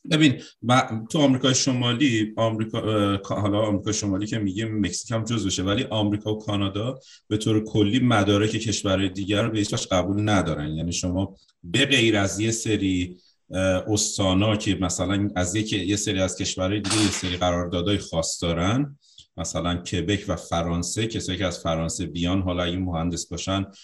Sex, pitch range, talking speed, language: male, 90-110 Hz, 150 wpm, Persian